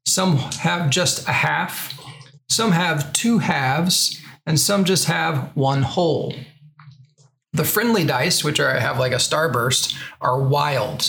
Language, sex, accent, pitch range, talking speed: English, male, American, 135-165 Hz, 140 wpm